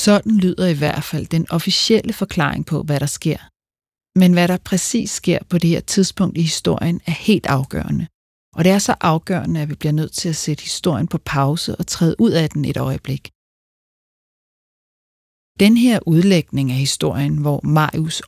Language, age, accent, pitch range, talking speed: Danish, 40-59, native, 135-180 Hz, 180 wpm